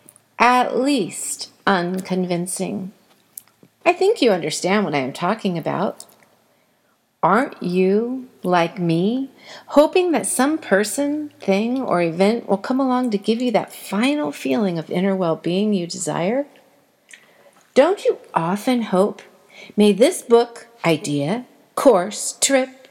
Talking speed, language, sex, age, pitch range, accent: 125 wpm, English, female, 50-69, 190-270 Hz, American